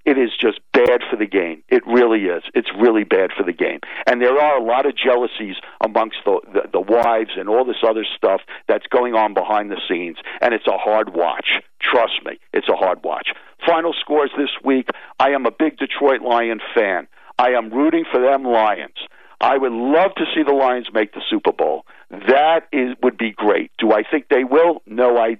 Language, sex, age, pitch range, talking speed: English, male, 50-69, 115-170 Hz, 215 wpm